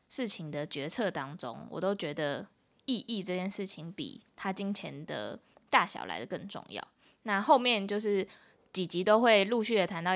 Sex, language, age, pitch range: female, Chinese, 20-39, 175-220 Hz